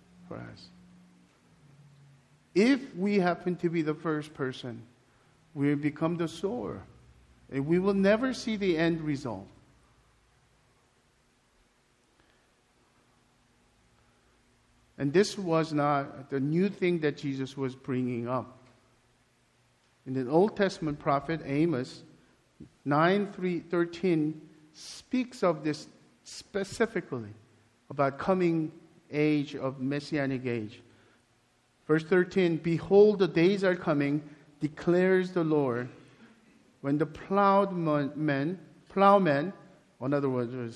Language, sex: English, male